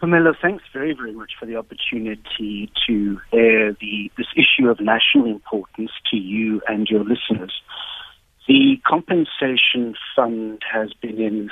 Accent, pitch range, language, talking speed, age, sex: British, 110-165 Hz, English, 140 wpm, 50-69, male